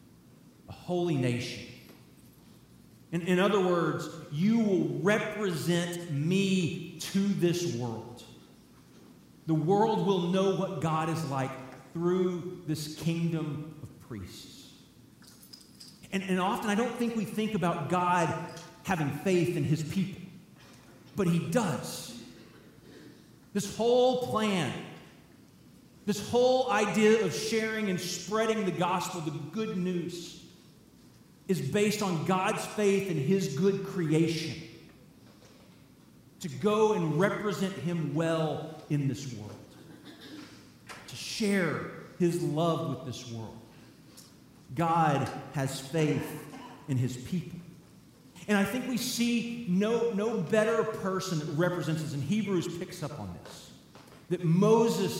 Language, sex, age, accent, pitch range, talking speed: English, male, 40-59, American, 155-195 Hz, 120 wpm